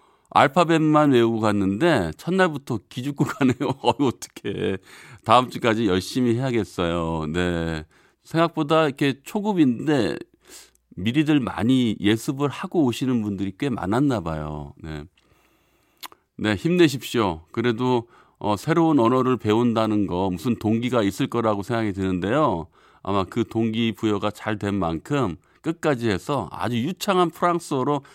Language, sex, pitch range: Korean, male, 105-150 Hz